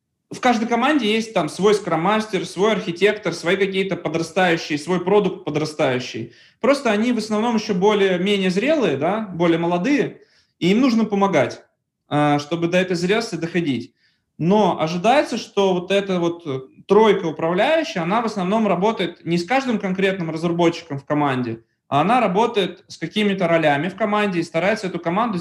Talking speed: 155 wpm